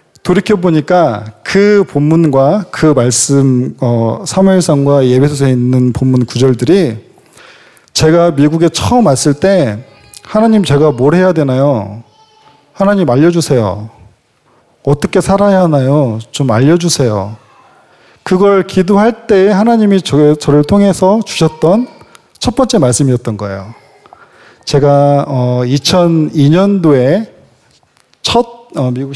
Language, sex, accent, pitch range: Korean, male, native, 130-185 Hz